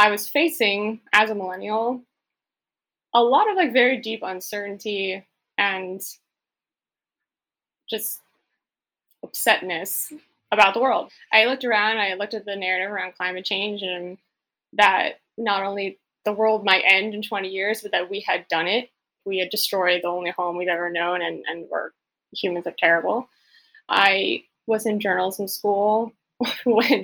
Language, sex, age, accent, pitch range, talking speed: English, female, 10-29, American, 180-220 Hz, 150 wpm